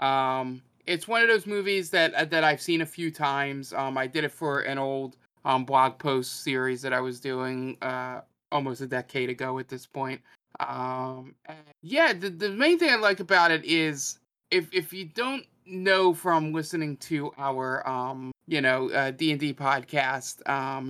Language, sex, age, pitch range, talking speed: English, male, 20-39, 130-165 Hz, 185 wpm